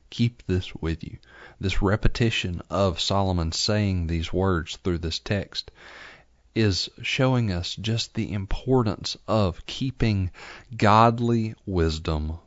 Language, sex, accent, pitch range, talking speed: English, male, American, 80-105 Hz, 115 wpm